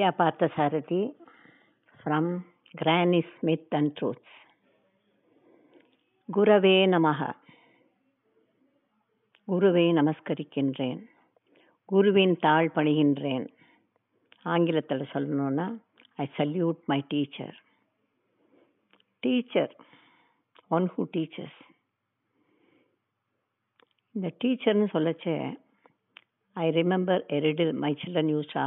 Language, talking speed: Tamil, 75 wpm